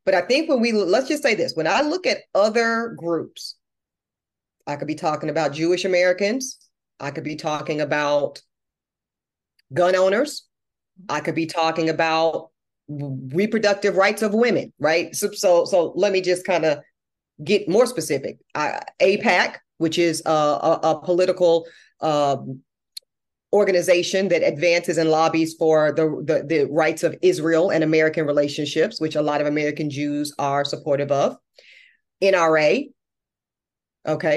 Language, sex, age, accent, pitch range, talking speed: English, female, 40-59, American, 155-235 Hz, 150 wpm